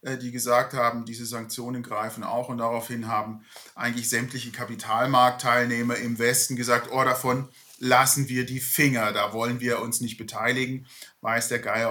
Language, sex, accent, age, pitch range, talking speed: German, male, German, 40-59, 120-150 Hz, 155 wpm